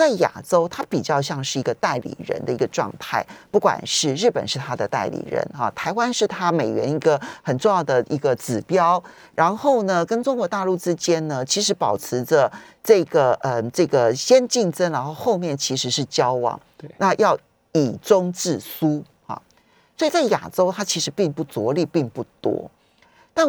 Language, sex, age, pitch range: Chinese, male, 40-59, 155-230 Hz